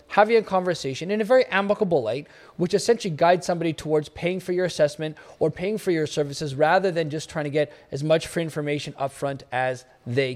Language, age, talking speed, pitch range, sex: English, 20-39, 210 wpm, 150-200 Hz, male